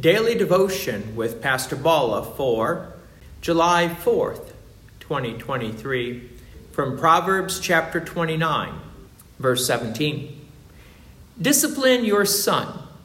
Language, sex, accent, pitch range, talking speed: English, male, American, 120-195 Hz, 85 wpm